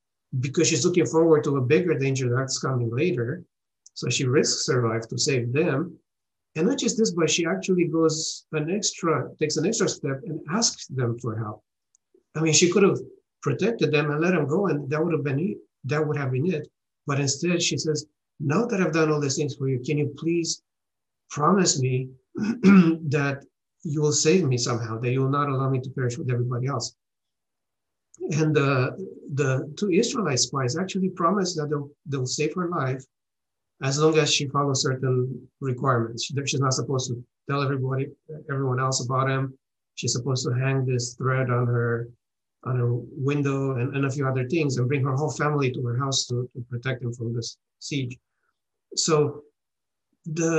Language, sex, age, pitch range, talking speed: English, male, 50-69, 130-160 Hz, 185 wpm